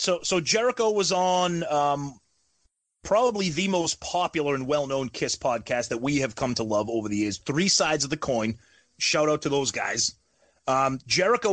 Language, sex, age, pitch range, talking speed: English, male, 30-49, 120-170 Hz, 180 wpm